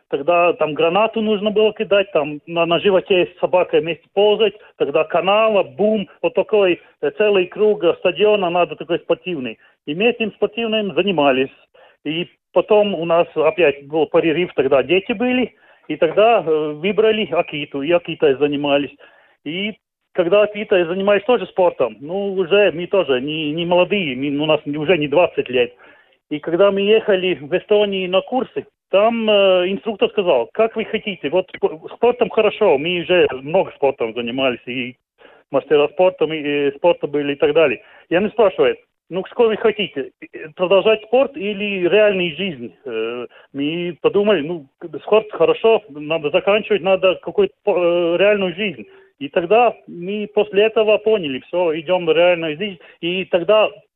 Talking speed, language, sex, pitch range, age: 155 wpm, Russian, male, 160-210 Hz, 40-59